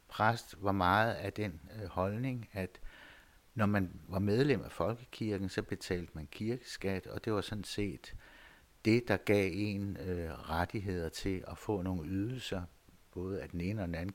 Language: Danish